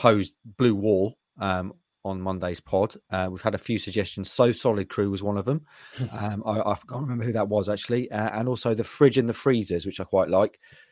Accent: British